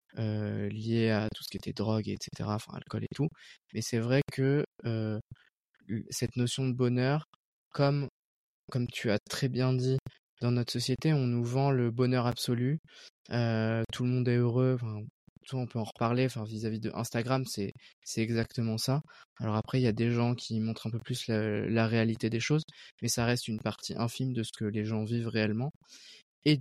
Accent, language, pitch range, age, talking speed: French, French, 115-130 Hz, 20-39, 200 wpm